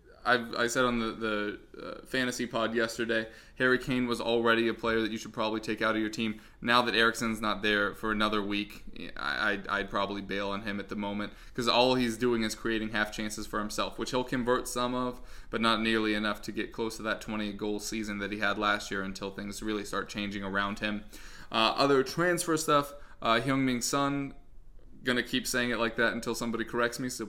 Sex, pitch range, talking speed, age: male, 110-125 Hz, 215 wpm, 20-39